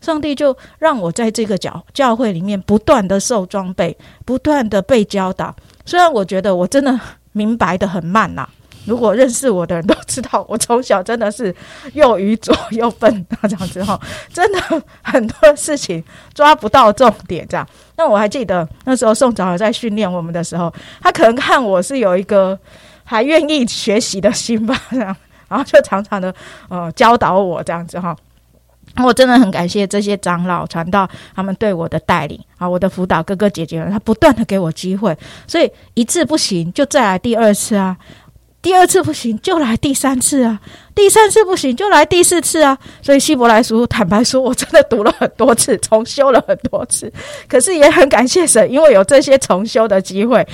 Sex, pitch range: female, 190-270 Hz